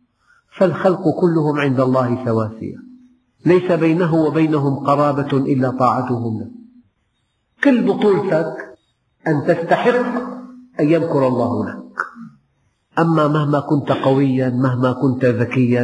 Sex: male